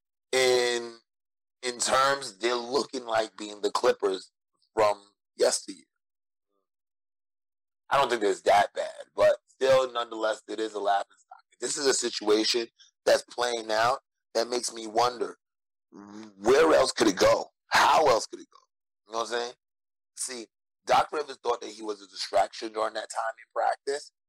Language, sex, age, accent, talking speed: English, male, 30-49, American, 160 wpm